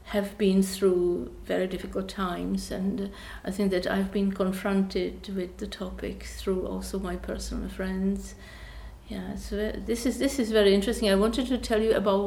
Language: English